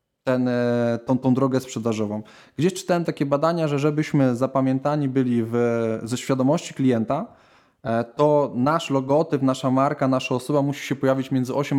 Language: Polish